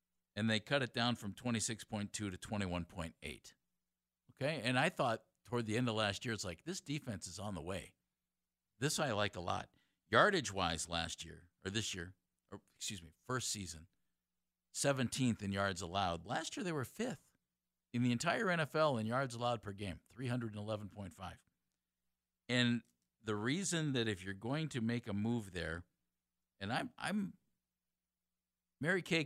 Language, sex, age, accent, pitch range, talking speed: English, male, 50-69, American, 85-120 Hz, 165 wpm